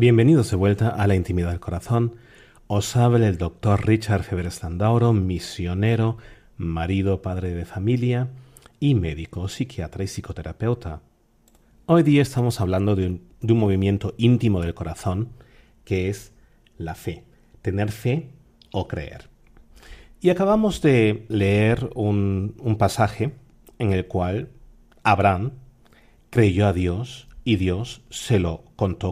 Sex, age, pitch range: male, 40-59, 95-120 Hz